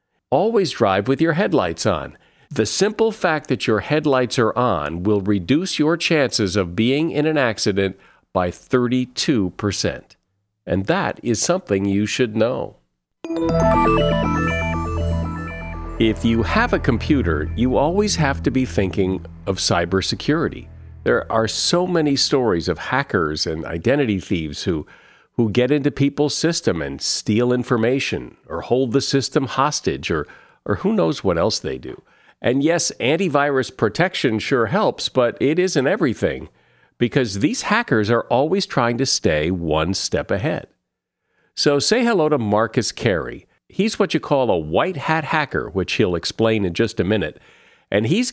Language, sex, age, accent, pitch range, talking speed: English, male, 50-69, American, 95-145 Hz, 150 wpm